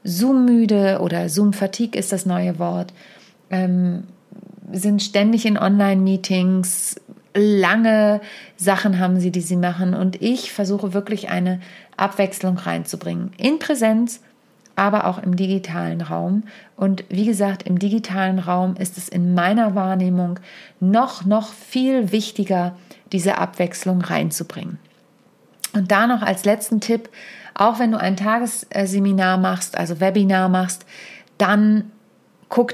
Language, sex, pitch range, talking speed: German, female, 185-215 Hz, 125 wpm